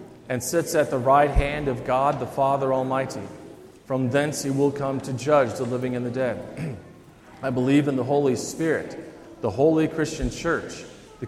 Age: 40-59